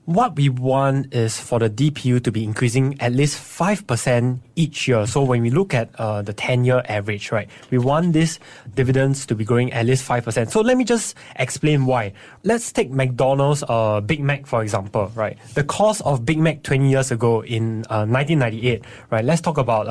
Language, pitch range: English, 120-150 Hz